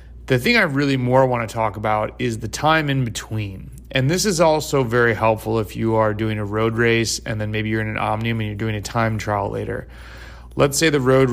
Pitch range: 110-125 Hz